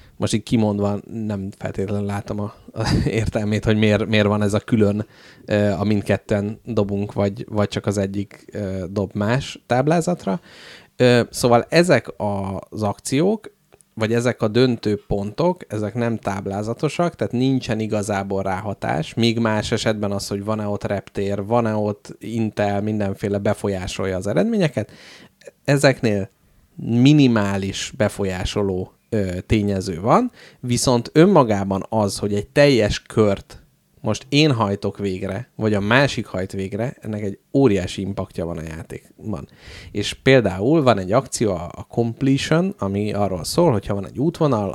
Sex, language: male, Hungarian